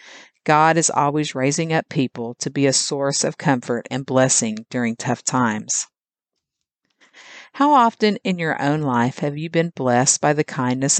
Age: 50-69